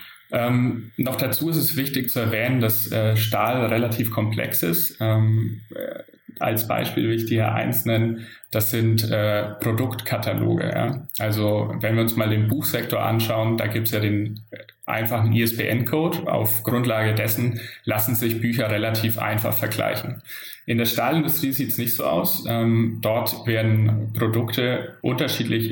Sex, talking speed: male, 150 wpm